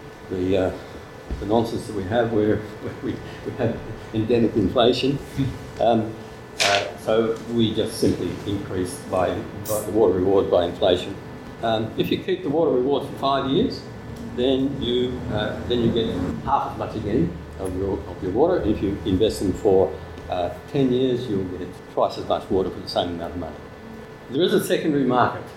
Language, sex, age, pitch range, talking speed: English, male, 60-79, 95-115 Hz, 185 wpm